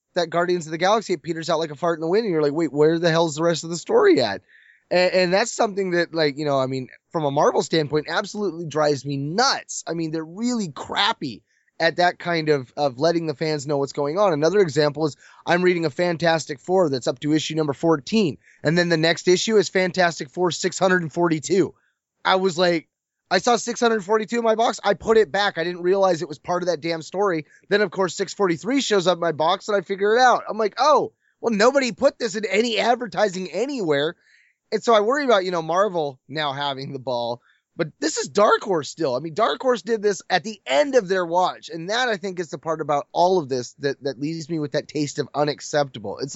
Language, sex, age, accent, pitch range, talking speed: English, male, 20-39, American, 155-205 Hz, 240 wpm